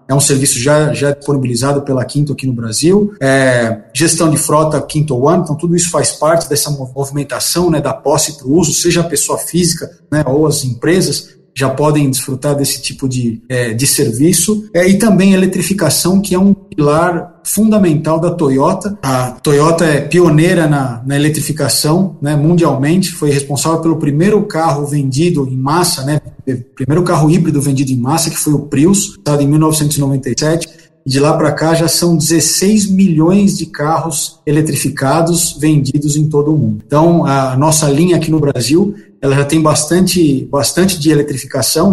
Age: 50-69